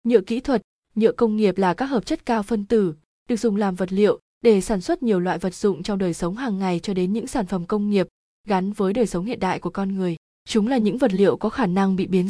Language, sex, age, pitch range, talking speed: Vietnamese, female, 20-39, 185-230 Hz, 275 wpm